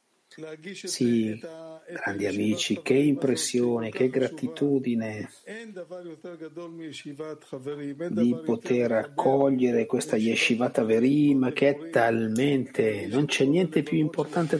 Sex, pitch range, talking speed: male, 120-160 Hz, 85 wpm